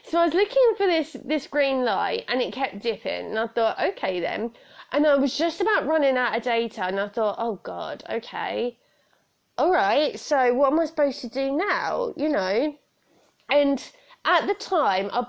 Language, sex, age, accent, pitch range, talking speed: English, female, 20-39, British, 215-295 Hz, 195 wpm